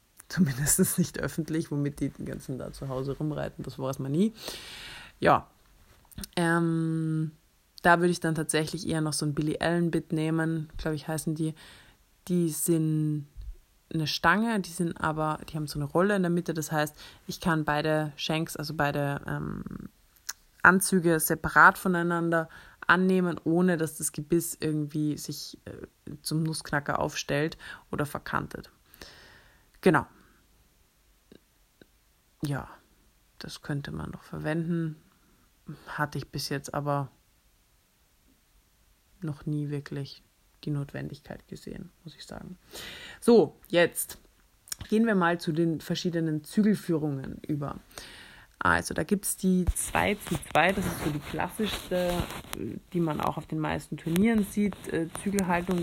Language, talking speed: German, 135 wpm